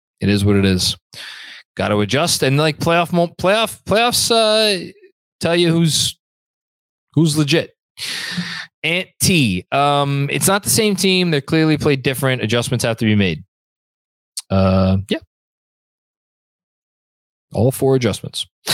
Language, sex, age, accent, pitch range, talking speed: English, male, 20-39, American, 105-150 Hz, 130 wpm